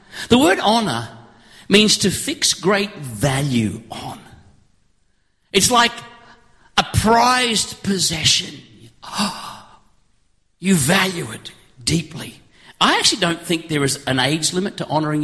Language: English